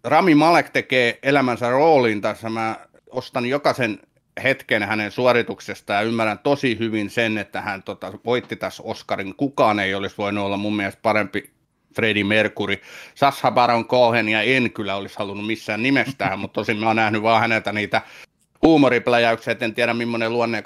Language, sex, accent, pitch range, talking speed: Finnish, male, native, 110-135 Hz, 165 wpm